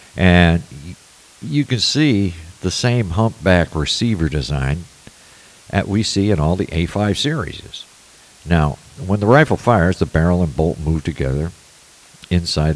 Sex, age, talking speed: male, 50-69, 135 wpm